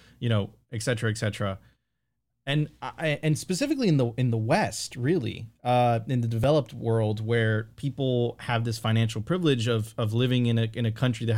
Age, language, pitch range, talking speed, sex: 30-49, English, 115-135 Hz, 190 wpm, male